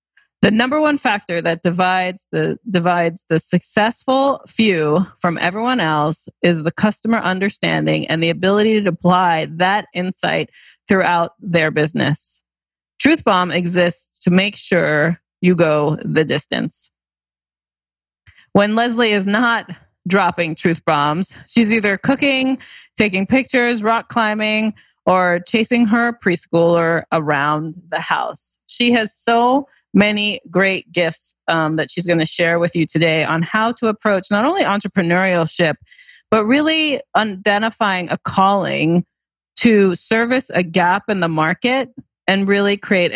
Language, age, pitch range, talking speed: English, 20-39, 170-215 Hz, 135 wpm